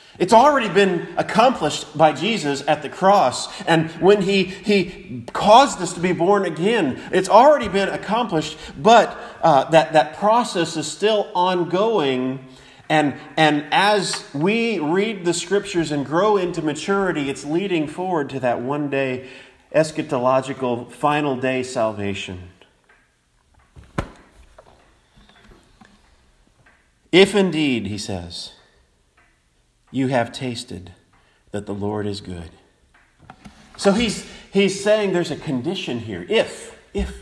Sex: male